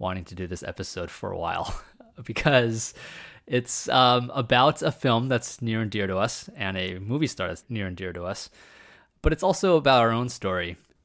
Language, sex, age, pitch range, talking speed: English, male, 20-39, 95-125 Hz, 200 wpm